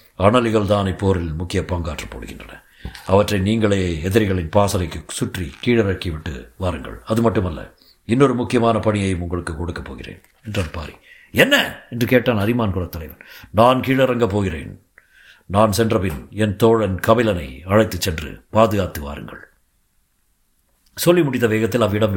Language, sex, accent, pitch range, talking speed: Tamil, male, native, 95-120 Hz, 120 wpm